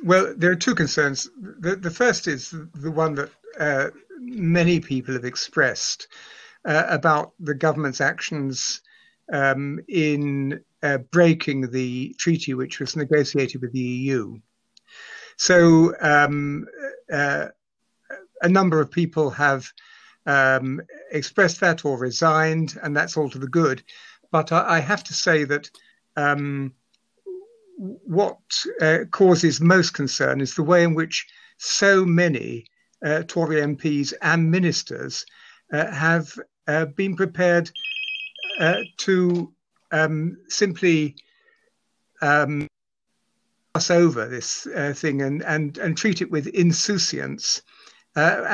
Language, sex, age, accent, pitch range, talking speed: English, male, 60-79, British, 145-180 Hz, 125 wpm